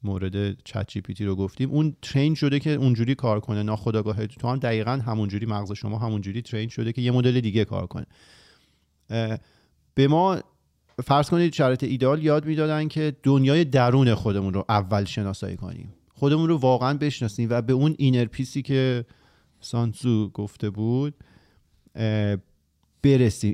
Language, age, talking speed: Persian, 40-59, 145 wpm